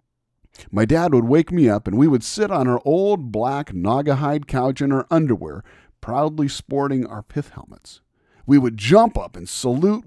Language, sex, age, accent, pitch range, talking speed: English, male, 50-69, American, 105-155 Hz, 180 wpm